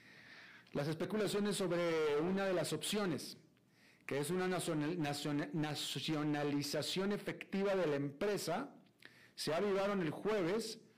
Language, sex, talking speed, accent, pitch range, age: Spanish, male, 105 wpm, Mexican, 150-190 Hz, 40-59